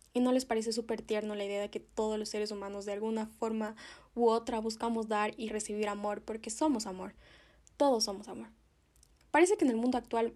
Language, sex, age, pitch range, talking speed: Spanish, female, 10-29, 215-265 Hz, 210 wpm